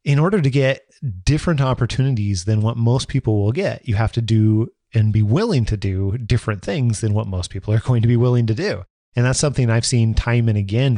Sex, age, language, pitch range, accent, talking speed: male, 30-49, English, 105-130 Hz, American, 230 wpm